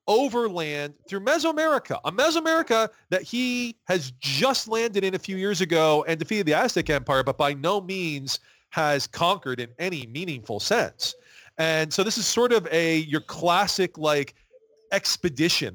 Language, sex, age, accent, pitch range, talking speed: English, male, 40-59, American, 150-230 Hz, 155 wpm